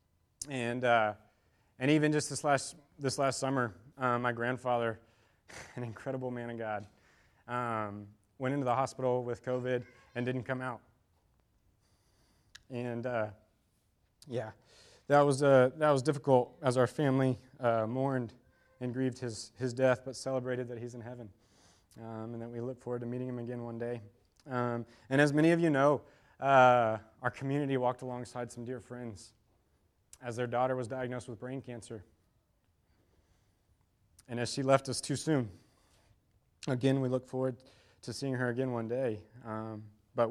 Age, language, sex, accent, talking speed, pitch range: 30-49, English, male, American, 160 wpm, 115-130 Hz